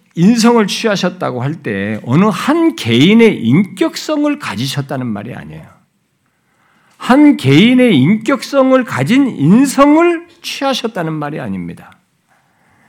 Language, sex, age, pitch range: Korean, male, 50-69, 160-265 Hz